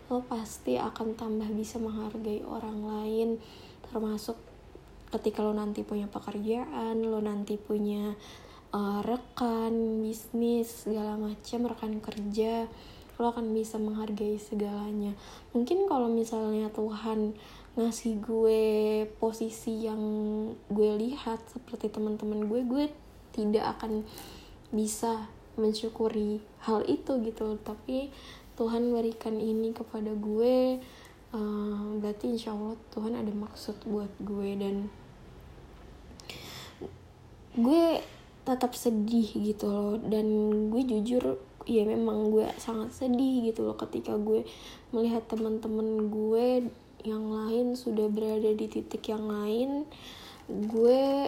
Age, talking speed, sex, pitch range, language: 20-39, 110 wpm, female, 215-230 Hz, Indonesian